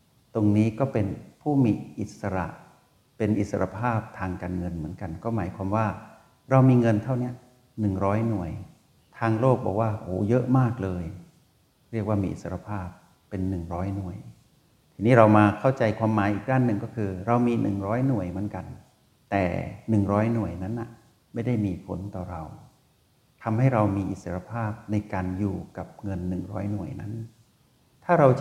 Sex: male